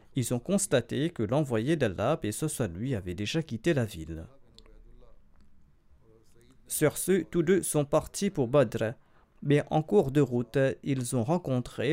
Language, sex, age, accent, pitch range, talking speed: French, male, 40-59, French, 115-150 Hz, 155 wpm